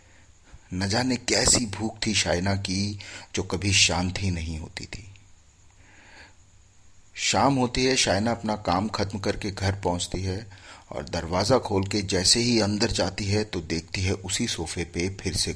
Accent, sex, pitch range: native, male, 85-110 Hz